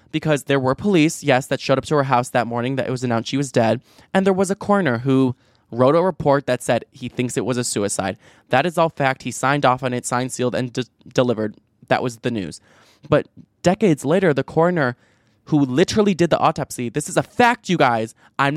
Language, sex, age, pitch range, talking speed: English, male, 20-39, 125-160 Hz, 230 wpm